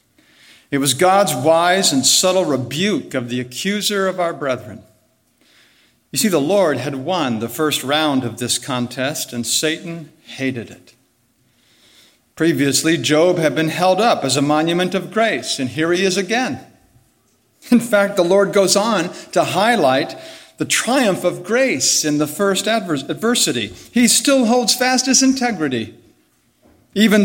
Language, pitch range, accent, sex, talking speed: English, 135-195 Hz, American, male, 150 wpm